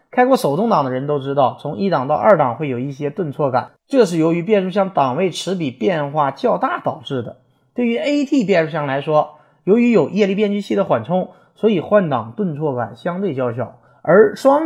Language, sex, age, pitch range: Chinese, male, 30-49, 135-215 Hz